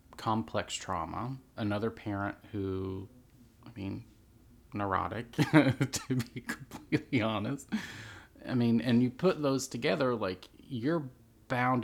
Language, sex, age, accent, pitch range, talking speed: English, male, 30-49, American, 95-115 Hz, 110 wpm